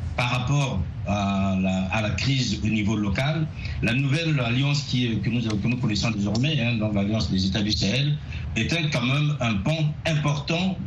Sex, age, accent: male, 60-79, French